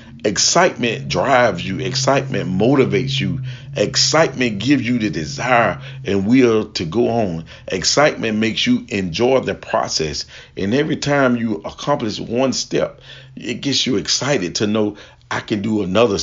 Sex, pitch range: male, 100-135 Hz